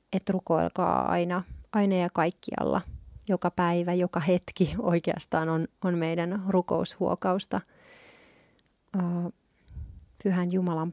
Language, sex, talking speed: Finnish, female, 100 wpm